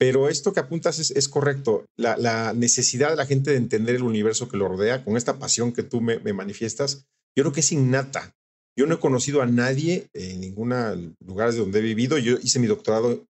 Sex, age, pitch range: male, 40-59, 115-145 Hz